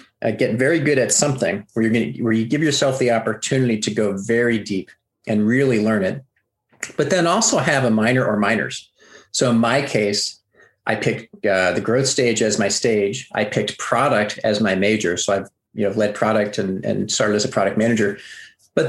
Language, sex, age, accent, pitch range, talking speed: English, male, 40-59, American, 100-115 Hz, 200 wpm